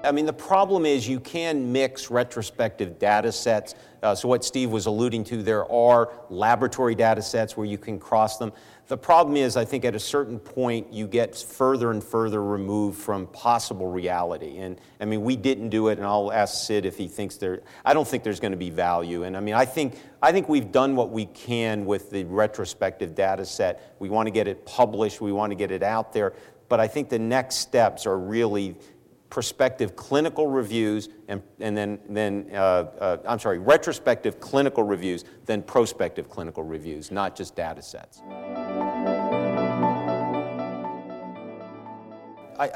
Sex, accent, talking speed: male, American, 180 wpm